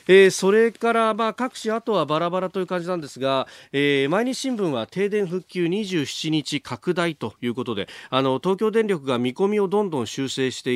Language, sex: Japanese, male